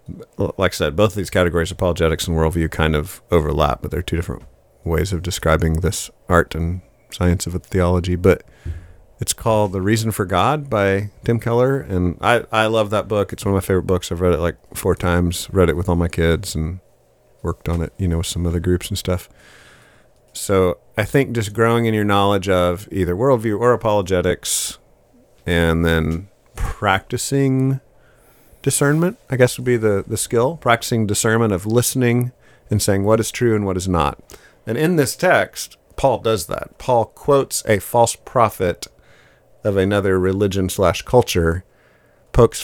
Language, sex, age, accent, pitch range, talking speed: English, male, 40-59, American, 90-115 Hz, 180 wpm